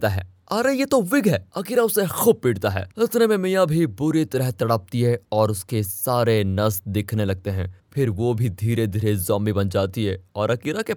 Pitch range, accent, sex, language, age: 110-175 Hz, native, male, Hindi, 20-39